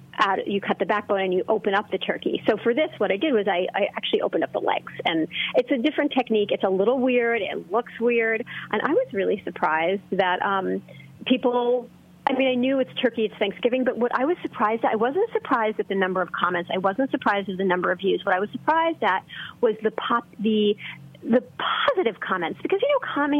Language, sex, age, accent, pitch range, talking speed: English, female, 30-49, American, 195-255 Hz, 250 wpm